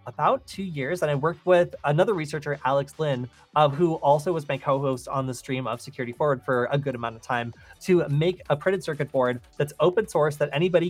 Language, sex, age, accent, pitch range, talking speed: English, male, 20-39, American, 130-165 Hz, 220 wpm